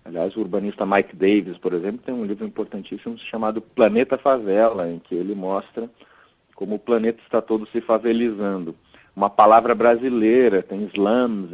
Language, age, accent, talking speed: Portuguese, 40-59, Brazilian, 155 wpm